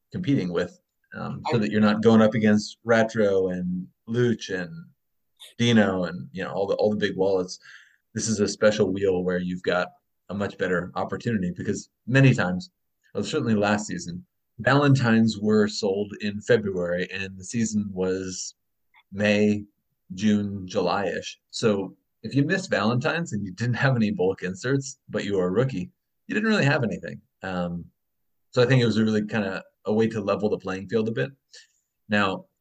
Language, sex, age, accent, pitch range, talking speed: English, male, 30-49, American, 95-120 Hz, 180 wpm